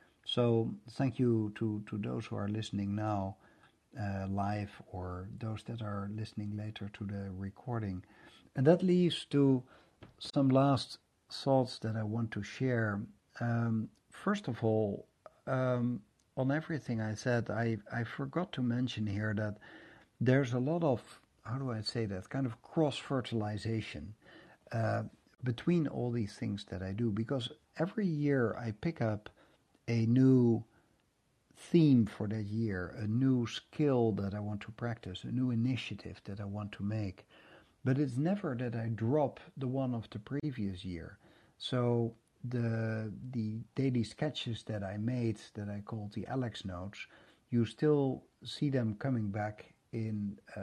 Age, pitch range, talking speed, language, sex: 60-79, 105-125 Hz, 155 wpm, English, male